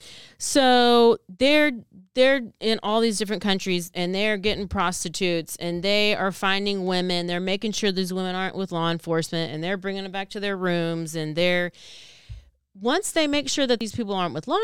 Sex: female